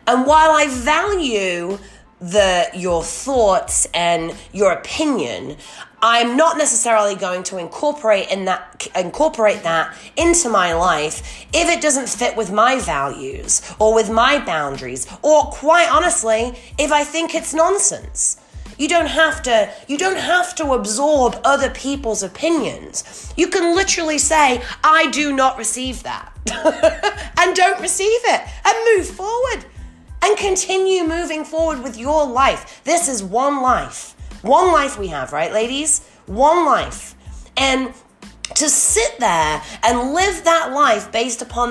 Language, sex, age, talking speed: English, female, 30-49, 140 wpm